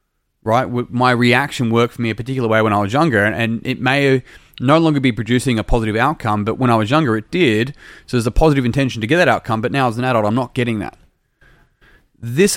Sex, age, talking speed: male, 30-49, 235 wpm